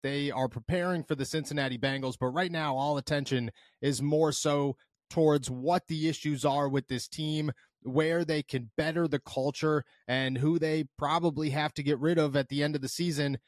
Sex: male